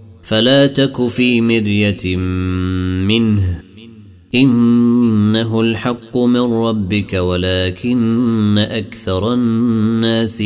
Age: 30-49